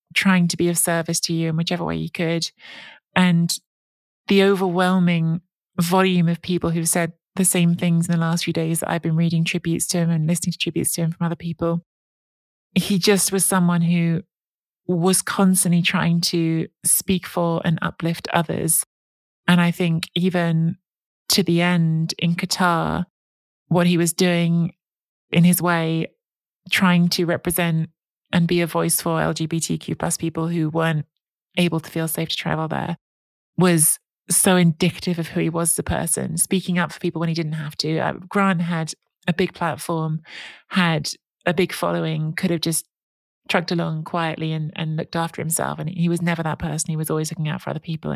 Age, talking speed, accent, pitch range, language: 20-39, 185 wpm, British, 160-175 Hz, English